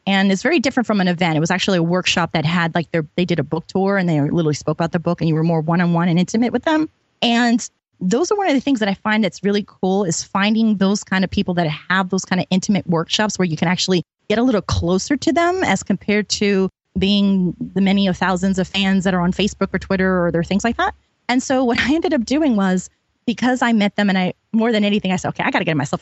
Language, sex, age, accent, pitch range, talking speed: English, female, 20-39, American, 180-220 Hz, 280 wpm